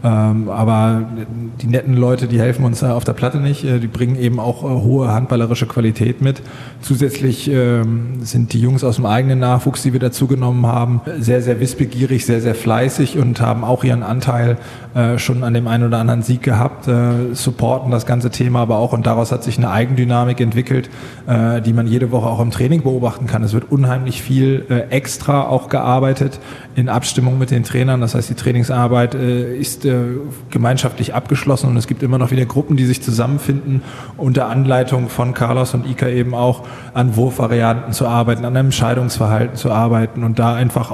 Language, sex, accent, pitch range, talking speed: German, male, German, 120-130 Hz, 175 wpm